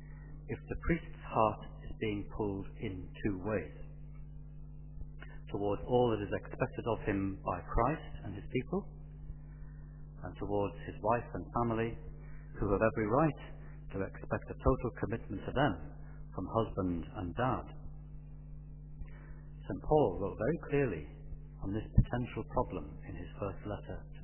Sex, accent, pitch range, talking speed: male, British, 100-150 Hz, 140 wpm